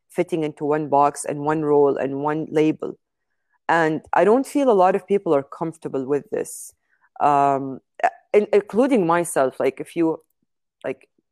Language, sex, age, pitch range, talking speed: English, female, 30-49, 145-180 Hz, 155 wpm